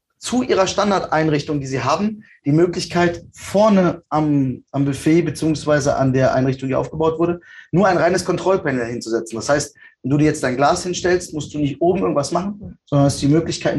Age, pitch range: 20-39, 135-170 Hz